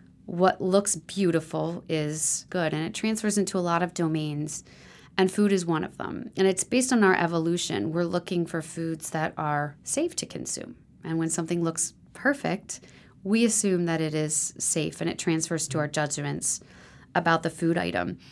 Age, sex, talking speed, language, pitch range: 30-49, female, 180 wpm, English, 165-205 Hz